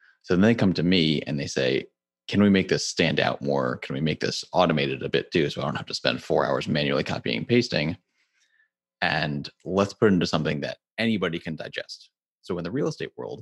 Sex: male